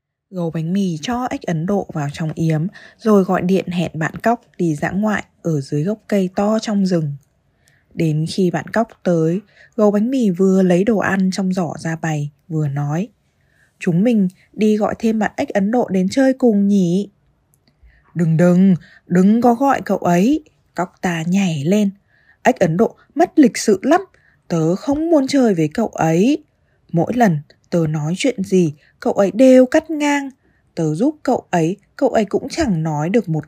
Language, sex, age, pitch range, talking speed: Vietnamese, female, 20-39, 170-240 Hz, 185 wpm